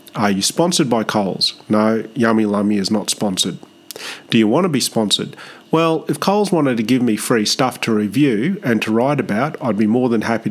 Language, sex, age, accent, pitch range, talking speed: English, male, 30-49, Australian, 110-145 Hz, 210 wpm